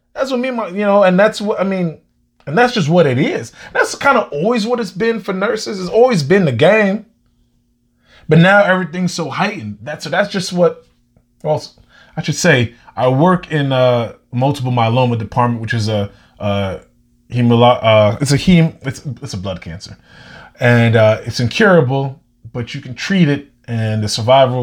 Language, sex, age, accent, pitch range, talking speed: English, male, 20-39, American, 105-150 Hz, 190 wpm